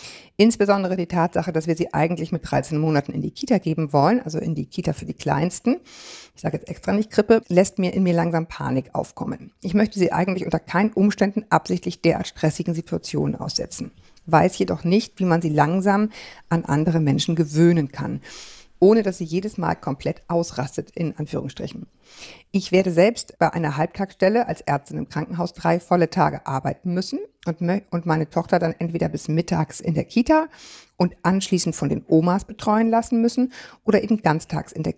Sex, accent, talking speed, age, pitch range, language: female, German, 180 wpm, 50-69, 160-195 Hz, German